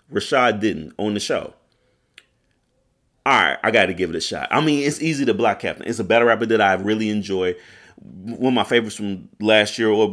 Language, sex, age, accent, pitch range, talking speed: English, male, 30-49, American, 100-160 Hz, 220 wpm